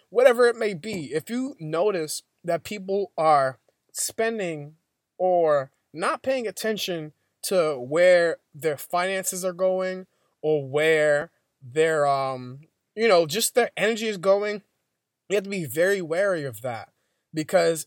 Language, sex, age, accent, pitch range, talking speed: English, male, 20-39, American, 150-200 Hz, 140 wpm